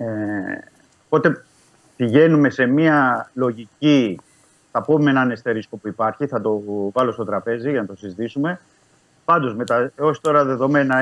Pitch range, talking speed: 115-150 Hz, 145 wpm